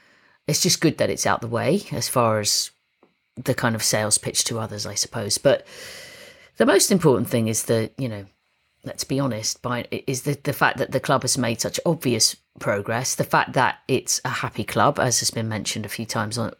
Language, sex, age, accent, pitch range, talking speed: English, female, 30-49, British, 115-145 Hz, 215 wpm